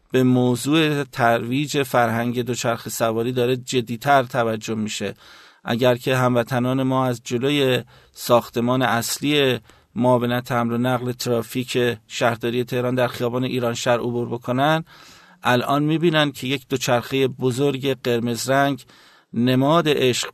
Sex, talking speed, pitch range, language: male, 115 wpm, 120-135 Hz, Persian